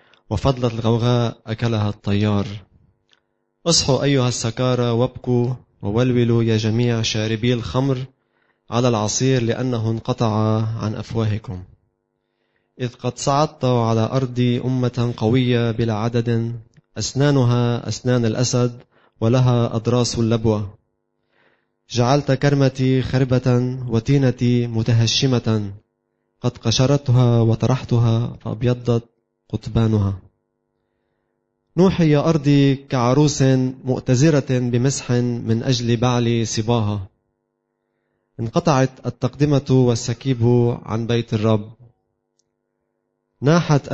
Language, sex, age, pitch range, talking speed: Arabic, male, 20-39, 110-130 Hz, 85 wpm